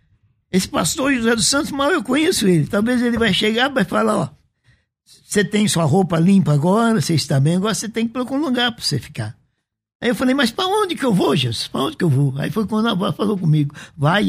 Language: Portuguese